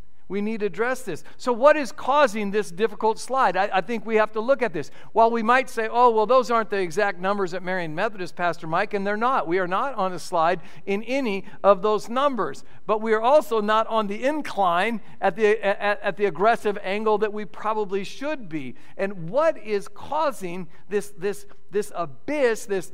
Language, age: English, 50-69